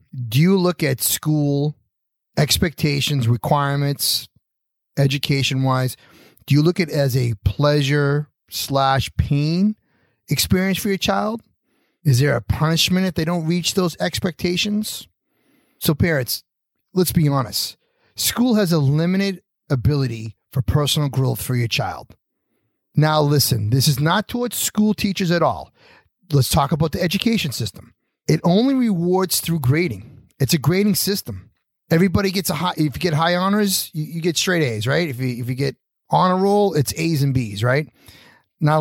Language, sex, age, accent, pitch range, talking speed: English, male, 30-49, American, 135-175 Hz, 150 wpm